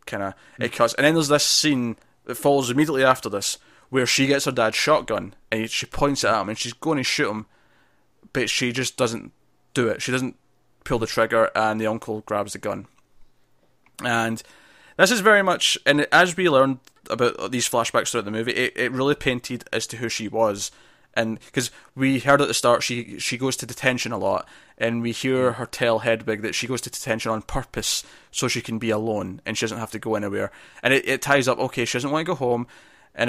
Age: 20-39